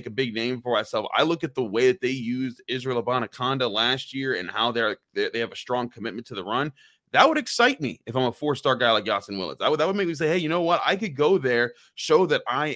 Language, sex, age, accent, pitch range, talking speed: English, male, 30-49, American, 110-130 Hz, 270 wpm